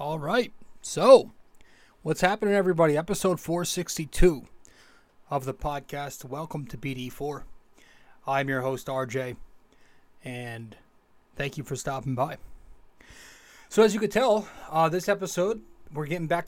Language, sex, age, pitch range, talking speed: English, male, 30-49, 135-175 Hz, 135 wpm